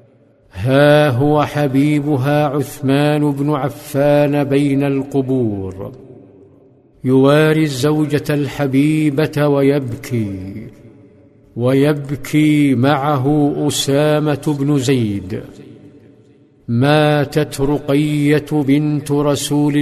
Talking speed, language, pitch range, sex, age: 65 wpm, Arabic, 135-150 Hz, male, 50-69